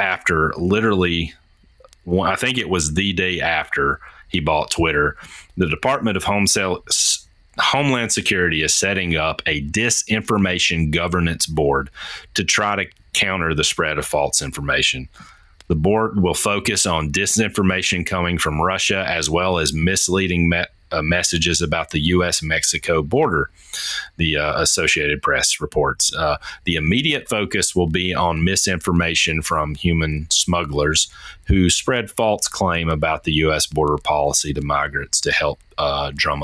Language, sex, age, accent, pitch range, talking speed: English, male, 30-49, American, 75-95 Hz, 140 wpm